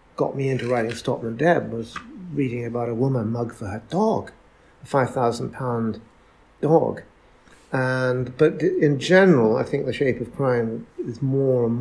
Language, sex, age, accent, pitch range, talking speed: English, male, 60-79, British, 115-135 Hz, 170 wpm